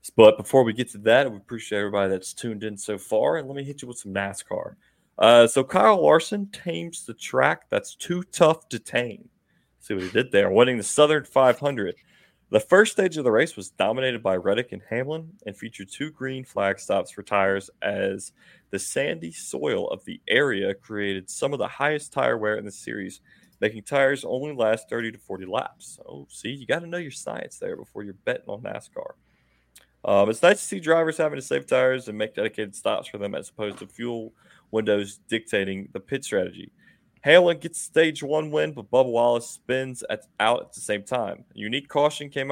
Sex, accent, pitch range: male, American, 105-150 Hz